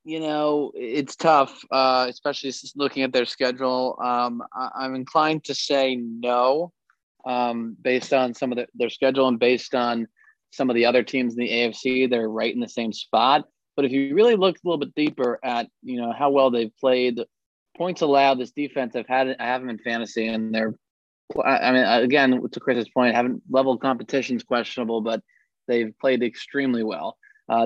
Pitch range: 120-135 Hz